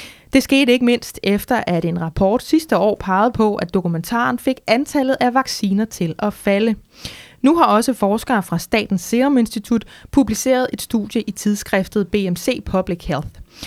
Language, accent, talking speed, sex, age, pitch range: Danish, native, 160 wpm, female, 20-39, 195-245 Hz